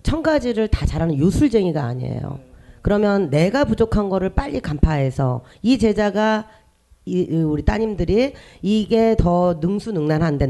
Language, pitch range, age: Korean, 150-250 Hz, 40-59